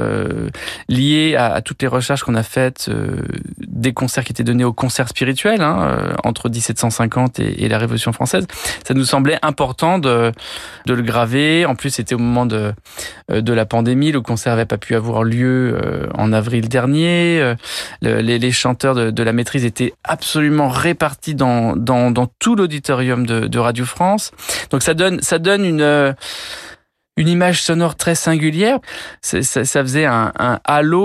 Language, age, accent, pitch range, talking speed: French, 20-39, French, 120-150 Hz, 175 wpm